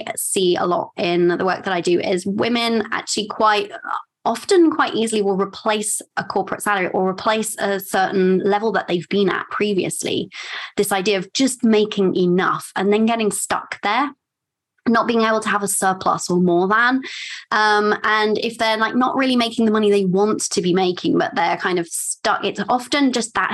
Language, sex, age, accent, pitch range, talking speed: English, female, 20-39, British, 185-225 Hz, 195 wpm